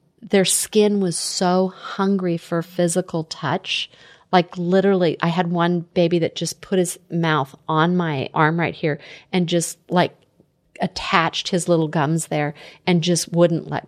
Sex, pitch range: female, 165-185 Hz